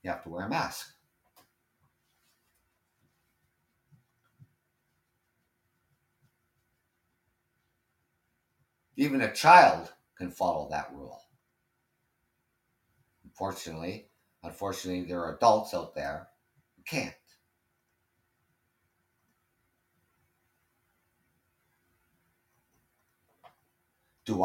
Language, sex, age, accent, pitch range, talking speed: English, male, 50-69, American, 90-125 Hz, 55 wpm